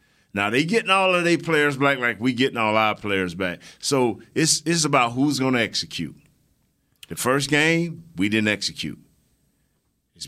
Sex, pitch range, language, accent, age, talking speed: male, 110-160 Hz, English, American, 40-59, 180 wpm